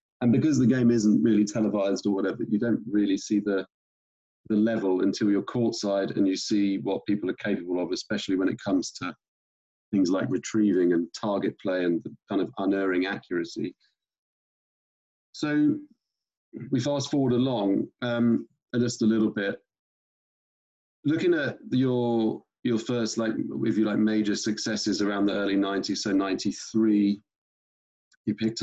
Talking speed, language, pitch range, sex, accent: 155 wpm, English, 100-115 Hz, male, British